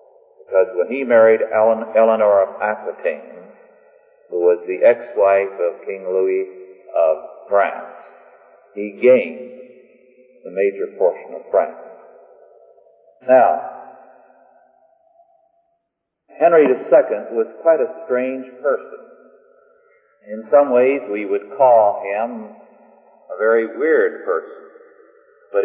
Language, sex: English, male